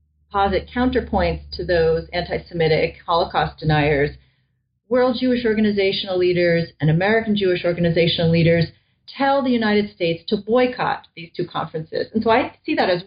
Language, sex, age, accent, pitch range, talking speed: English, female, 40-59, American, 170-215 Hz, 140 wpm